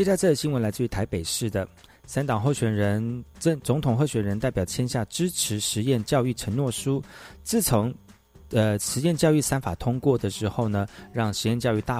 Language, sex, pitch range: Chinese, male, 100-140 Hz